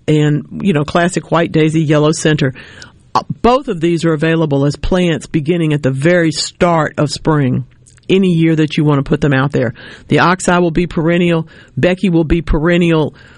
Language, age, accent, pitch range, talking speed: English, 50-69, American, 145-170 Hz, 185 wpm